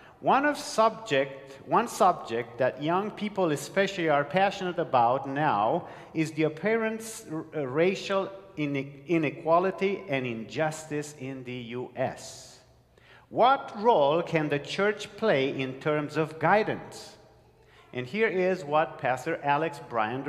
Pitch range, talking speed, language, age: 140-210 Hz, 120 wpm, English, 50-69